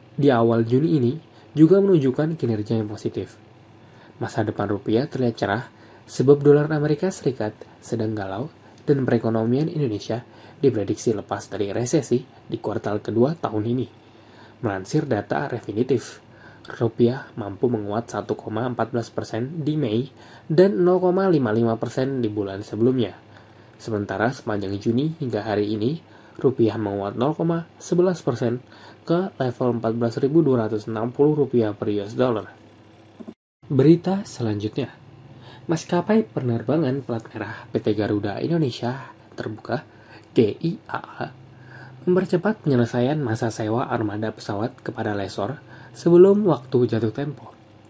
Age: 20-39